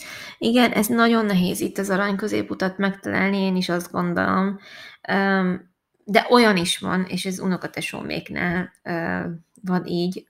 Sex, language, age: female, Hungarian, 20-39